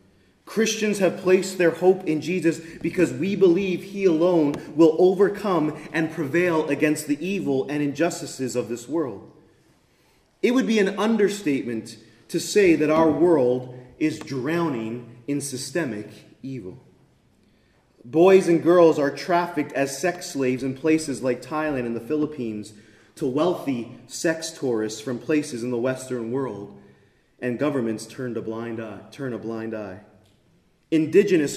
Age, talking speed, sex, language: 30-49, 135 wpm, male, English